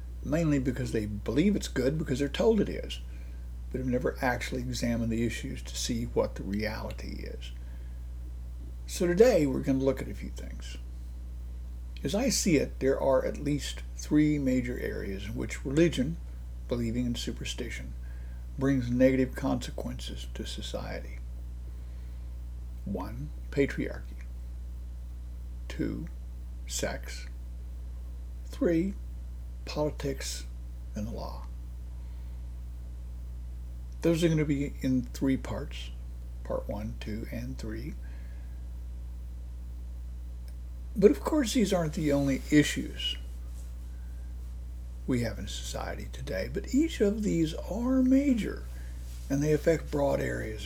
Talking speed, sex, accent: 120 wpm, male, American